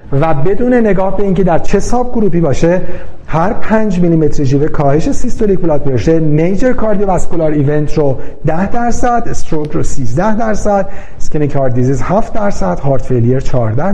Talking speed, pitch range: 150 wpm, 145-190 Hz